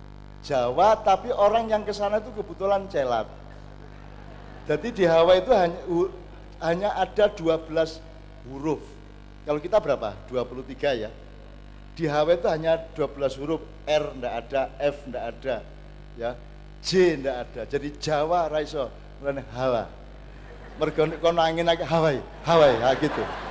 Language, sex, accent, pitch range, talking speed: Indonesian, male, native, 130-170 Hz, 130 wpm